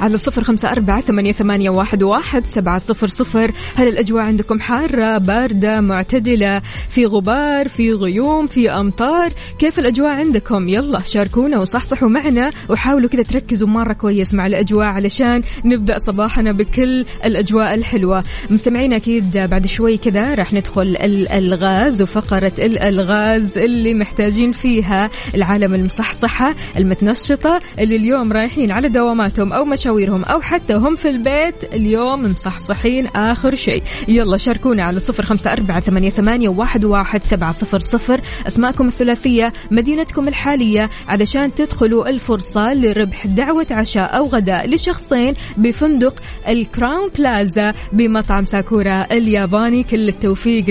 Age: 20-39